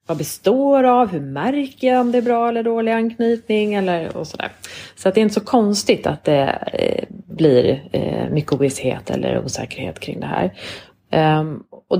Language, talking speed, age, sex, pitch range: English, 175 wpm, 30-49, female, 160-215 Hz